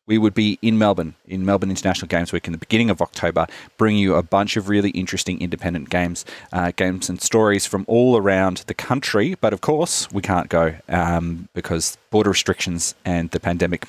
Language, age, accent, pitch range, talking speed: English, 30-49, Australian, 90-110 Hz, 200 wpm